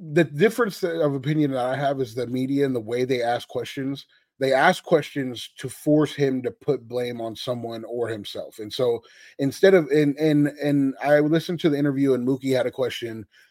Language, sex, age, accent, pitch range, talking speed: English, male, 30-49, American, 125-145 Hz, 210 wpm